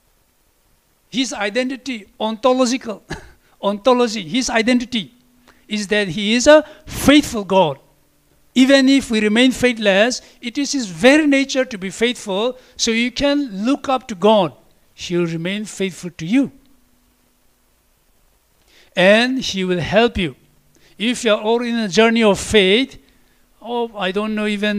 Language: English